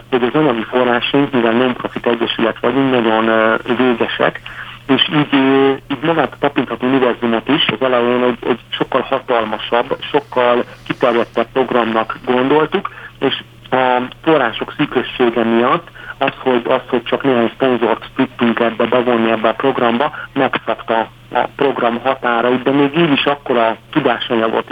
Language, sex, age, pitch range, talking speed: Hungarian, male, 60-79, 115-130 Hz, 145 wpm